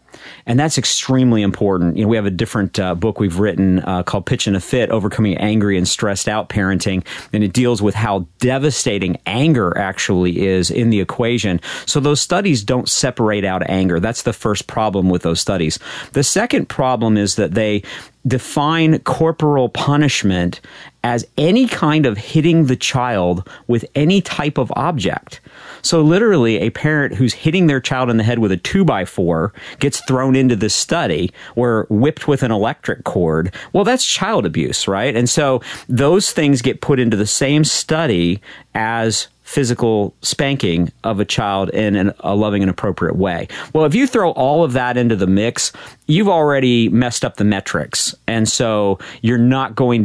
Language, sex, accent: English, male, American